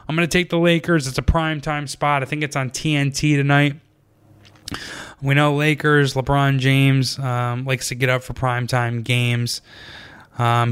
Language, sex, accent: English, male, American